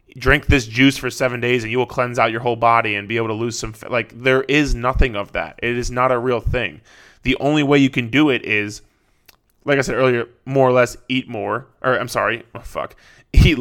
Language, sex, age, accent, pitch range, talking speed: English, male, 20-39, American, 110-130 Hz, 240 wpm